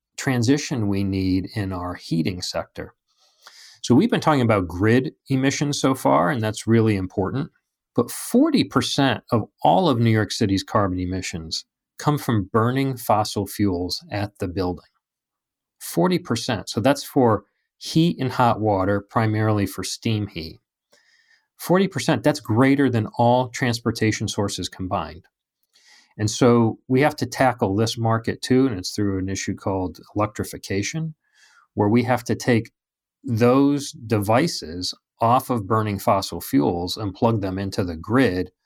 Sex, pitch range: male, 95-125 Hz